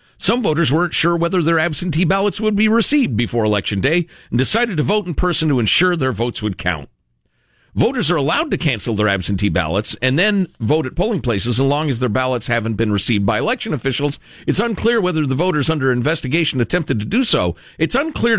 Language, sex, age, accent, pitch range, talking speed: English, male, 50-69, American, 100-160 Hz, 210 wpm